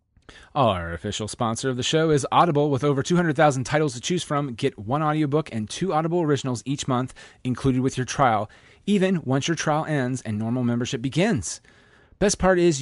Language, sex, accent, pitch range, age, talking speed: English, male, American, 125-160 Hz, 30-49, 195 wpm